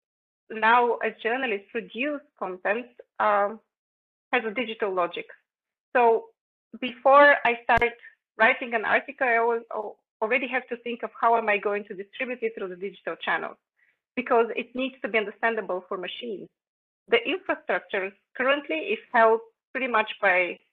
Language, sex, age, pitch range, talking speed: English, female, 30-49, 210-260 Hz, 150 wpm